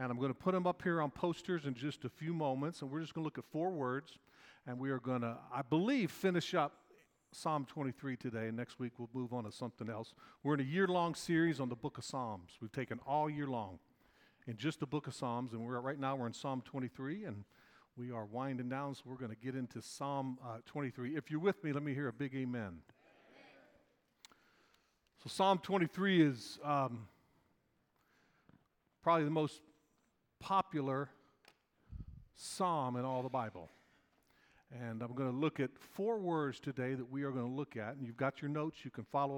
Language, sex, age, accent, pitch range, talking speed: English, male, 50-69, American, 125-160 Hz, 210 wpm